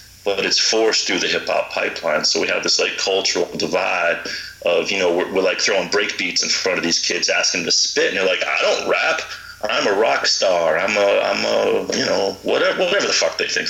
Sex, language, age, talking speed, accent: male, English, 40-59, 240 wpm, American